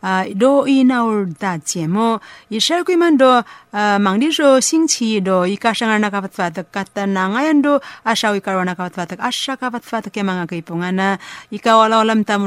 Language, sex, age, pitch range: Chinese, female, 30-49, 185-240 Hz